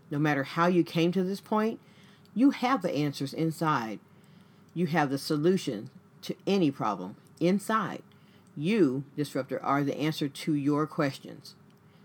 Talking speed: 145 wpm